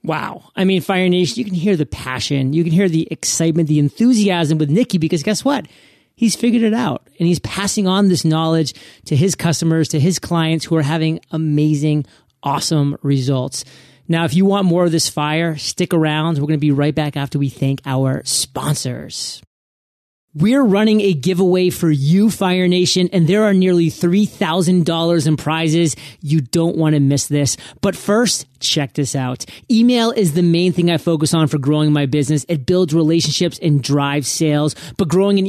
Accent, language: American, English